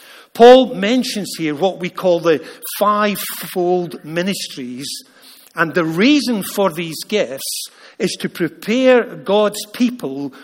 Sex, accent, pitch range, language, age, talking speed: male, British, 160-220 Hz, English, 50-69, 115 wpm